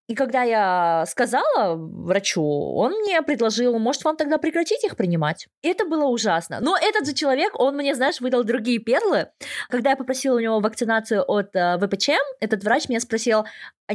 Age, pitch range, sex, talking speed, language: 20-39, 210-280 Hz, female, 175 wpm, Russian